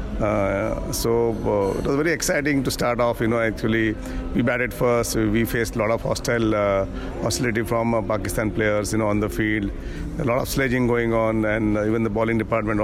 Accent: Indian